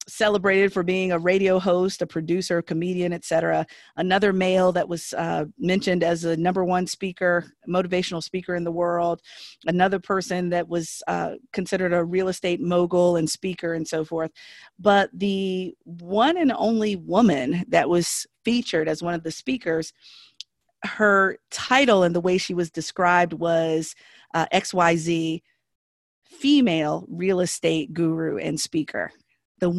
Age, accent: 40-59, American